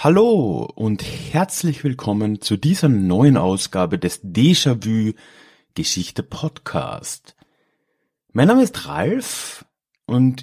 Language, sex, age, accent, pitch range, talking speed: German, male, 30-49, German, 110-155 Hz, 85 wpm